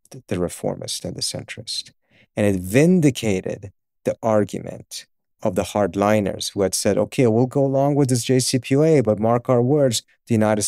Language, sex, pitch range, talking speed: English, male, 100-130 Hz, 165 wpm